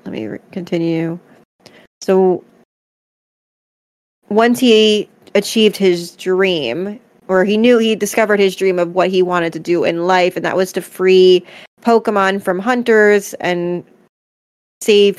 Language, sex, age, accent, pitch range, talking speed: English, female, 20-39, American, 175-210 Hz, 140 wpm